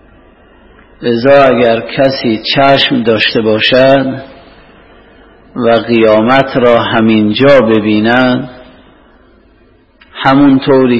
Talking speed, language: 65 wpm, Persian